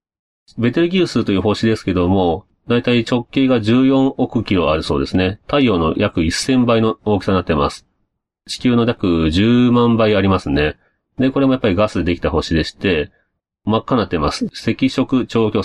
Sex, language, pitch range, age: male, Japanese, 85-125 Hz, 40-59